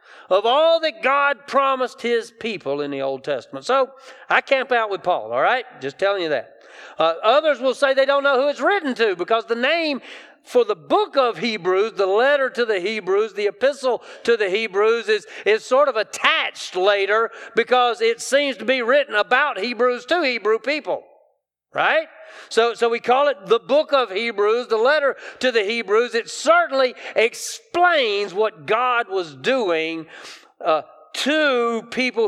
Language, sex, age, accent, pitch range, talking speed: English, male, 40-59, American, 195-315 Hz, 175 wpm